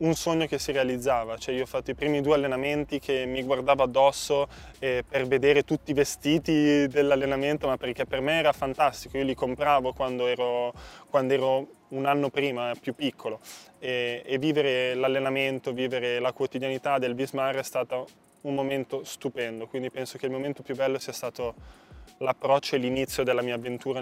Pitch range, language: 125-140 Hz, Italian